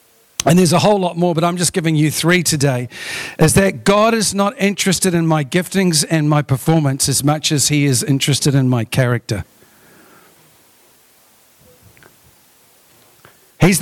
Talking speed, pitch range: 150 wpm, 150-190 Hz